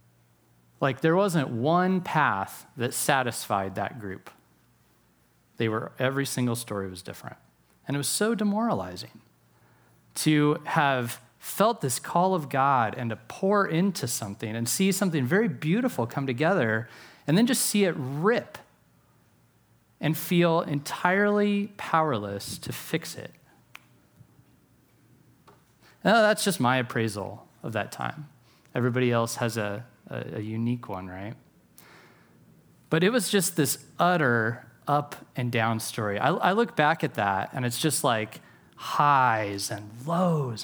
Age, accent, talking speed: 30-49, American, 135 wpm